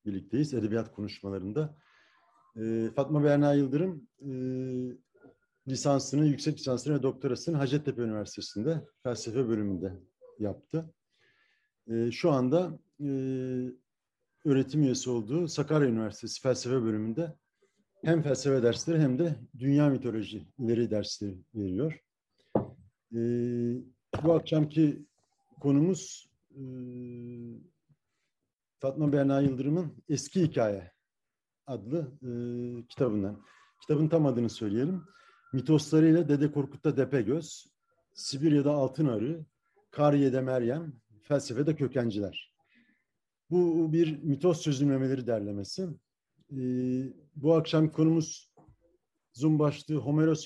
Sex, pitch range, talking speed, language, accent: male, 120-155 Hz, 95 wpm, Turkish, native